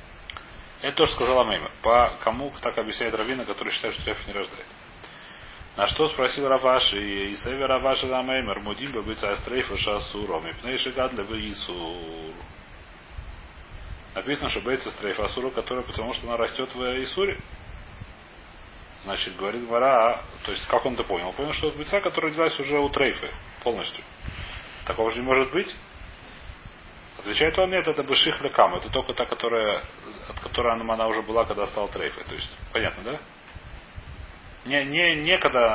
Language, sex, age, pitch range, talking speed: Russian, male, 30-49, 100-145 Hz, 155 wpm